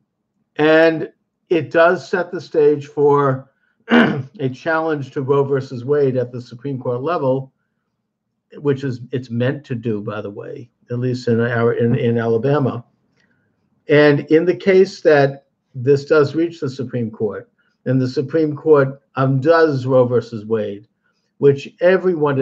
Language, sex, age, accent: English, male, 50-69, American